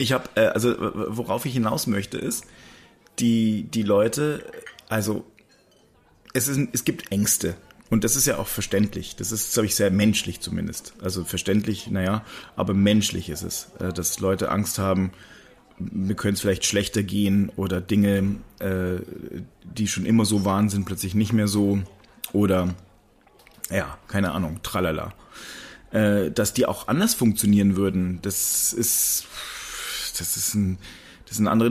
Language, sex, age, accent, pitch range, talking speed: German, male, 30-49, German, 100-120 Hz, 145 wpm